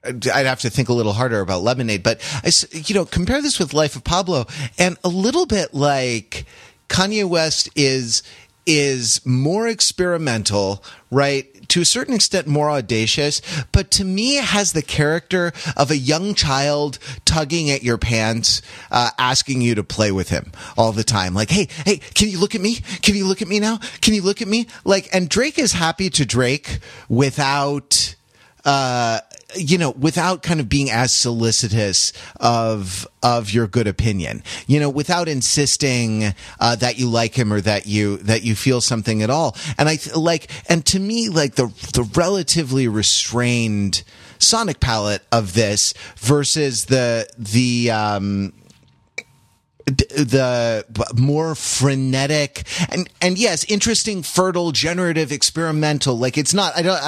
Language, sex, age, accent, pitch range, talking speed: English, male, 30-49, American, 115-175 Hz, 165 wpm